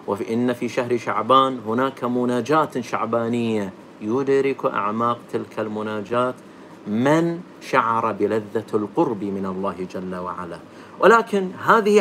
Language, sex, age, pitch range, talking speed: Arabic, male, 50-69, 115-170 Hz, 110 wpm